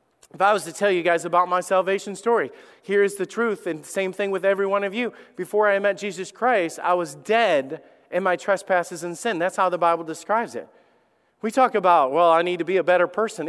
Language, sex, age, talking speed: English, male, 30-49, 235 wpm